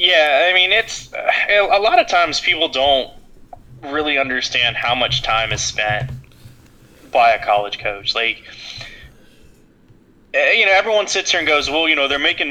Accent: American